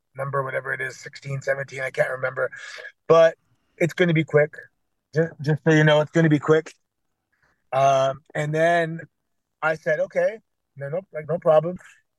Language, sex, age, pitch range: English, male, 30-49, 140-170 Hz